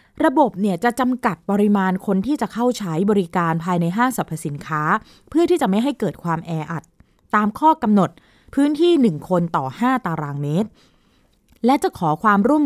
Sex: female